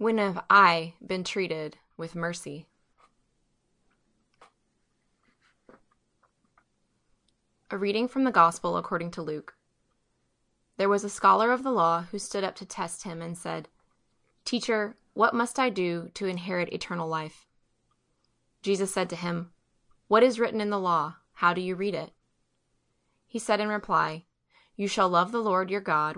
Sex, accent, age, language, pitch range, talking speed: female, American, 20-39, English, 175-210 Hz, 150 wpm